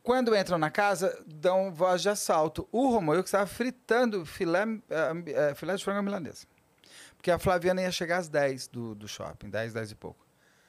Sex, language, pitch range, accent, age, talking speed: male, Portuguese, 125-190 Hz, Brazilian, 40-59, 195 wpm